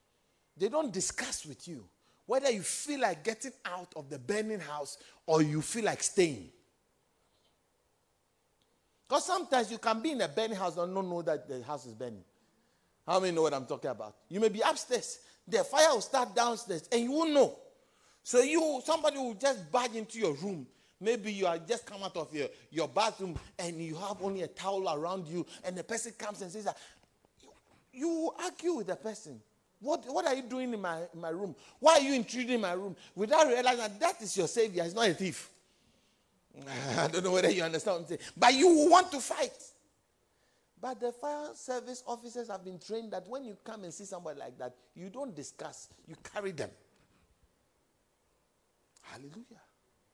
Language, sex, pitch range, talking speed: English, male, 170-250 Hz, 195 wpm